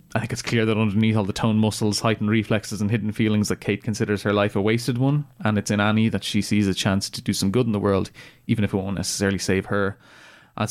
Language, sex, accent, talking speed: English, male, Irish, 265 wpm